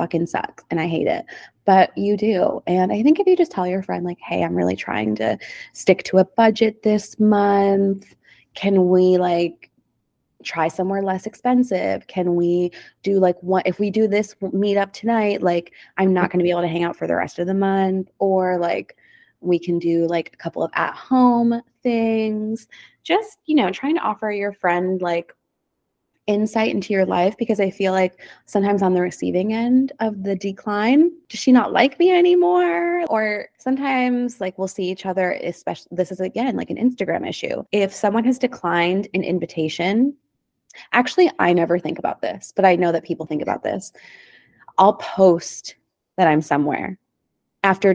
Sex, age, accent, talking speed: female, 20-39, American, 185 wpm